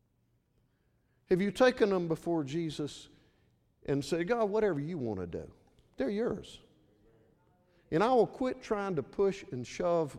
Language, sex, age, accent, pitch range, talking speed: English, male, 50-69, American, 145-225 Hz, 145 wpm